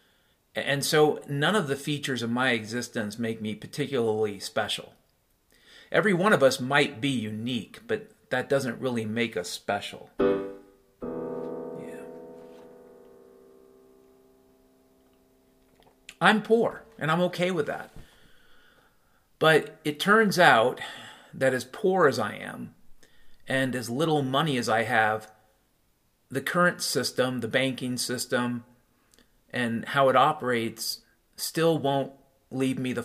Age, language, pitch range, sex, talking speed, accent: 40-59, English, 110-140 Hz, male, 120 wpm, American